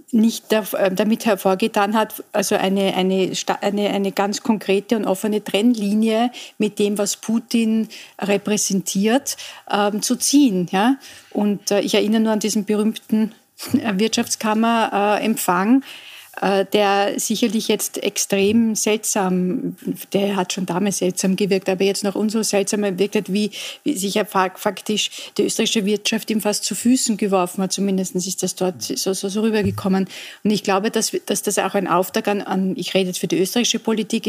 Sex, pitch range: female, 195-230 Hz